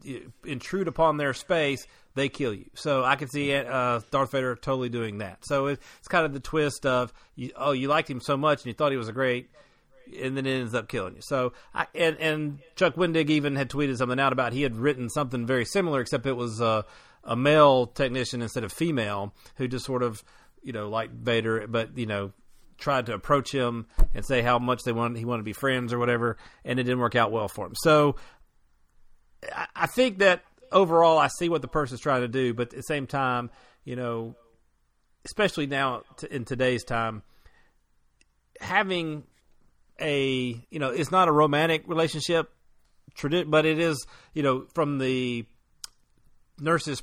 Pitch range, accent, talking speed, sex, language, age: 120-150 Hz, American, 190 wpm, male, English, 40-59